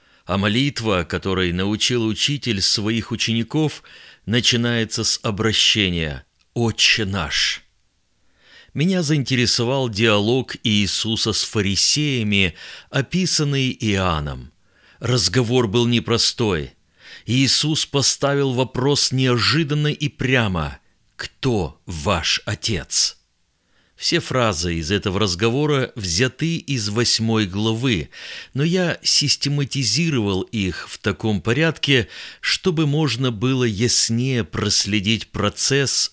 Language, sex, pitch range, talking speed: Russian, male, 100-130 Hz, 90 wpm